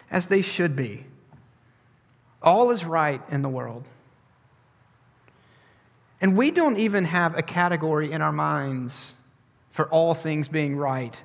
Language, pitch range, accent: English, 135-195 Hz, American